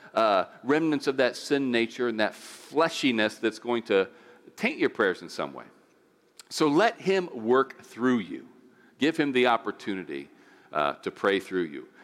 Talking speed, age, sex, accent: 165 wpm, 50-69, male, American